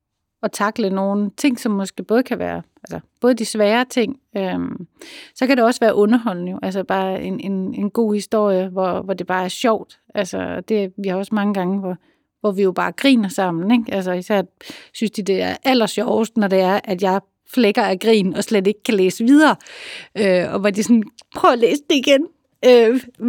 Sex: female